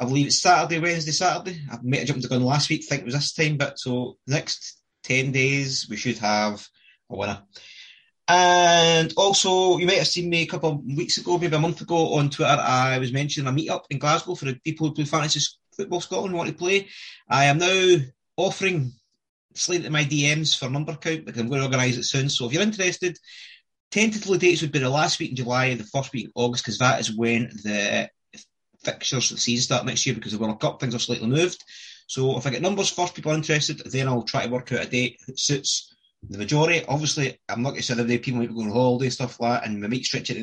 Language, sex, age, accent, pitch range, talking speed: English, male, 20-39, British, 125-165 Hz, 245 wpm